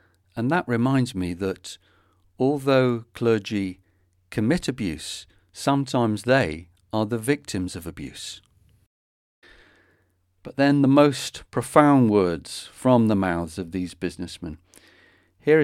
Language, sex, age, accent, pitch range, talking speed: English, male, 40-59, British, 90-125 Hz, 110 wpm